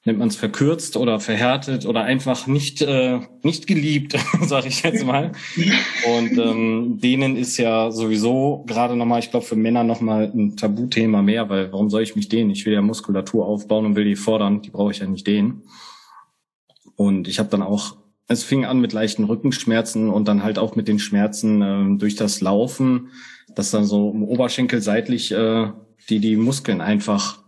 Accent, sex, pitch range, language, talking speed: German, male, 110-130 Hz, German, 190 wpm